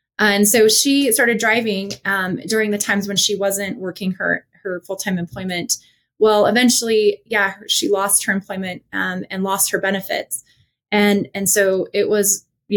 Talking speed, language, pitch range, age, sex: 170 wpm, English, 185-210 Hz, 20-39, female